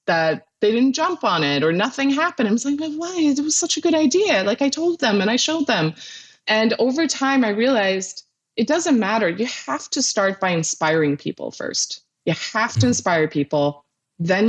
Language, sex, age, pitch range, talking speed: English, female, 20-39, 165-230 Hz, 205 wpm